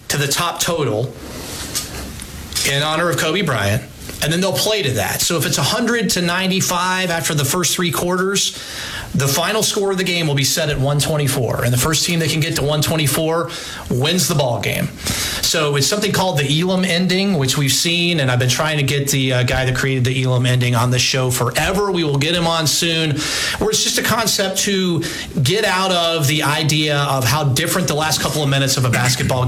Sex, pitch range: male, 130-170 Hz